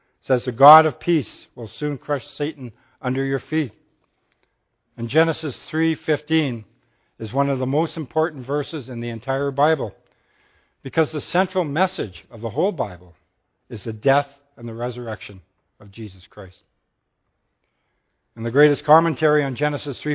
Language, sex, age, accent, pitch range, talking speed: English, male, 60-79, American, 115-150 Hz, 145 wpm